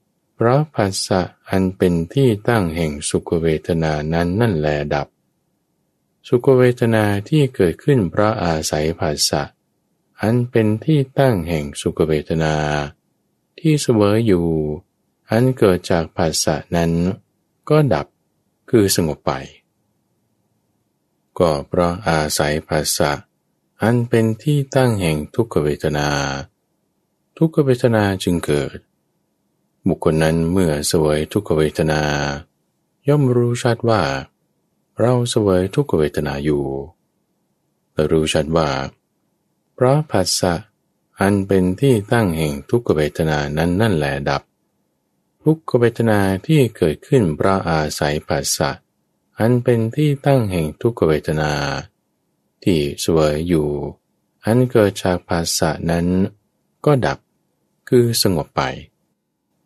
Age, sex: 20-39, male